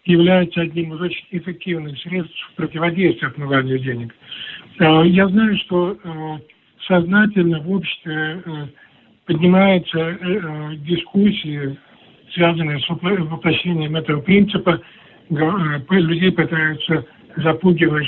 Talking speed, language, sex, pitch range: 85 wpm, Russian, male, 155-180 Hz